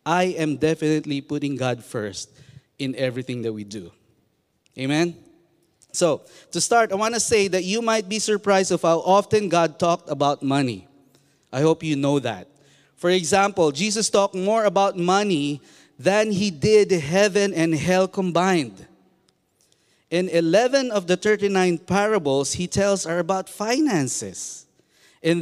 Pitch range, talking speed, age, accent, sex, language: 125-180 Hz, 145 wpm, 20-39, Filipino, male, English